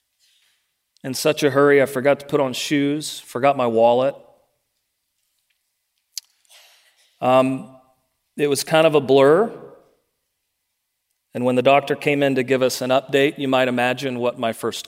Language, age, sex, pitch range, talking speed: English, 40-59, male, 130-155 Hz, 150 wpm